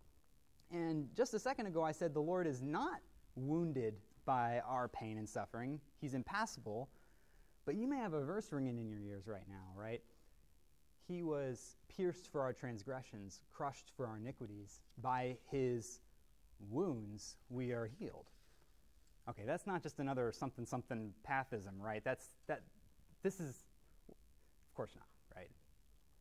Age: 20-39